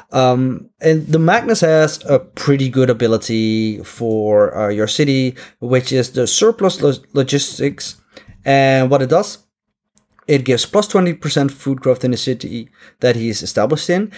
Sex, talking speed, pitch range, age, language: male, 150 wpm, 125-160 Hz, 30-49, English